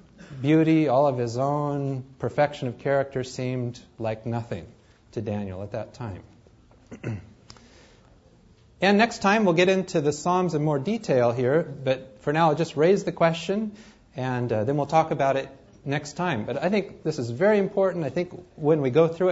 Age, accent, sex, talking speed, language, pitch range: 40-59, American, male, 180 wpm, English, 120-160 Hz